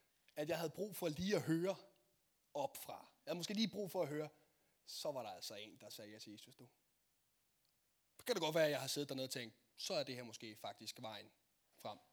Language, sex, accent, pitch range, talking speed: Danish, male, native, 135-195 Hz, 235 wpm